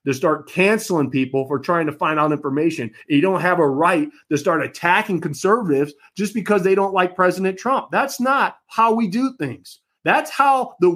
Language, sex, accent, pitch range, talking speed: English, male, American, 155-220 Hz, 190 wpm